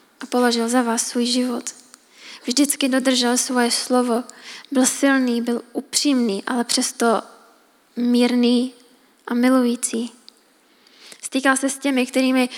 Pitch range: 240-265 Hz